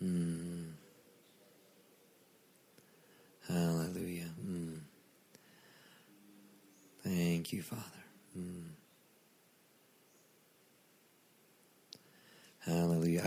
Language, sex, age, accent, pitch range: English, male, 40-59, American, 80-90 Hz